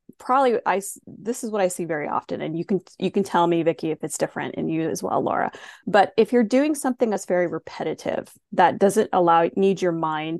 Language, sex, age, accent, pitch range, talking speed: English, female, 30-49, American, 175-220 Hz, 225 wpm